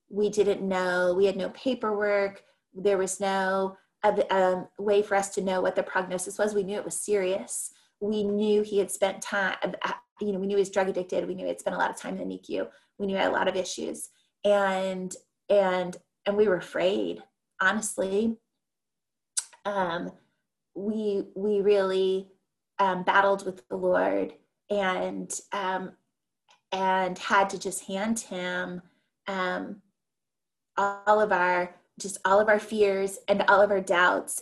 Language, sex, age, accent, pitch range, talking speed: English, female, 30-49, American, 190-205 Hz, 170 wpm